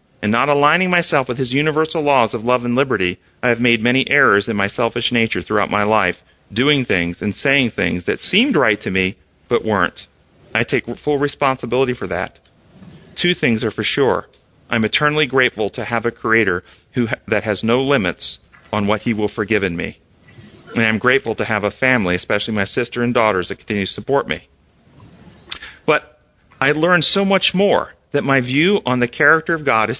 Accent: American